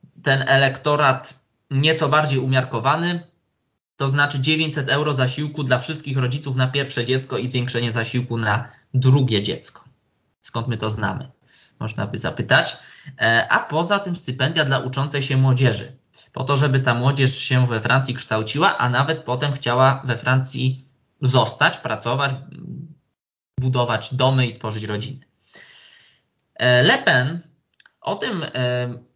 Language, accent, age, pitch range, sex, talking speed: Polish, native, 20-39, 120-155 Hz, male, 130 wpm